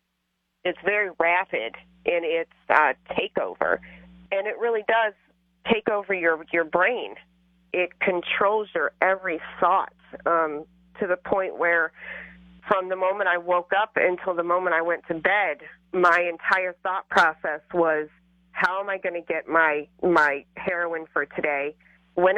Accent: American